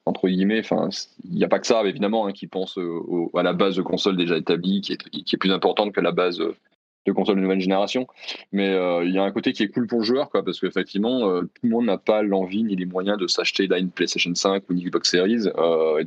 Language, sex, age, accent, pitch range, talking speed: French, male, 20-39, French, 95-115 Hz, 270 wpm